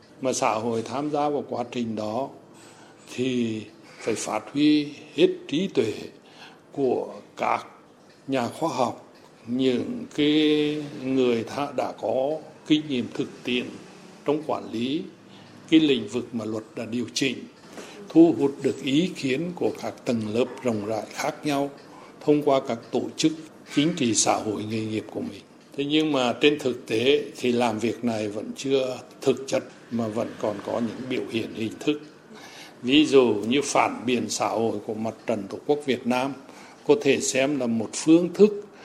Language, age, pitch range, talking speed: Vietnamese, 60-79, 120-150 Hz, 170 wpm